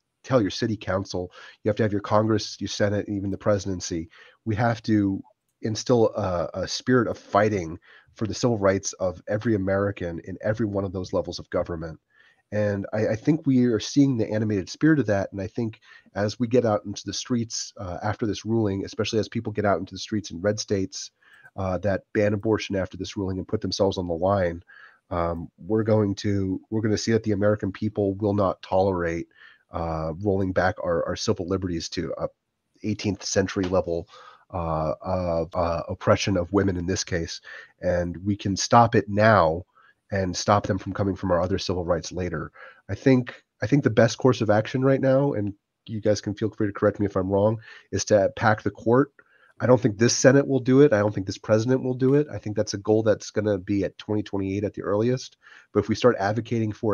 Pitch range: 95-110 Hz